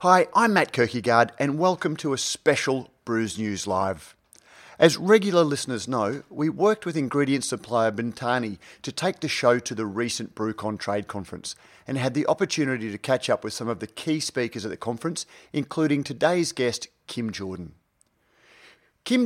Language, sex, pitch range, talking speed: English, male, 115-150 Hz, 170 wpm